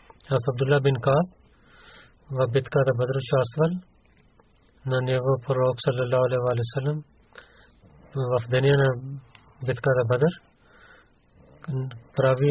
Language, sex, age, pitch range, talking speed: Bulgarian, male, 40-59, 125-145 Hz, 85 wpm